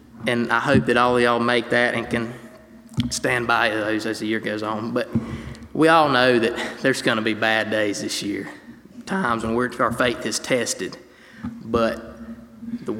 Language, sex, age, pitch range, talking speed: English, male, 20-39, 110-120 Hz, 180 wpm